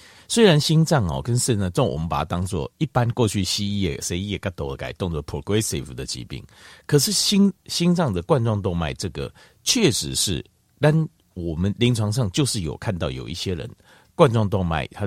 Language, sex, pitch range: Chinese, male, 90-135 Hz